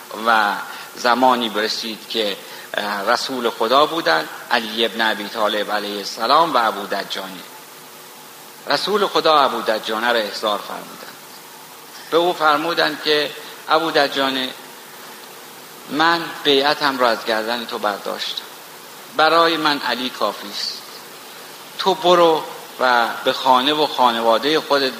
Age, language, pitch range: 50-69, Persian, 120-160 Hz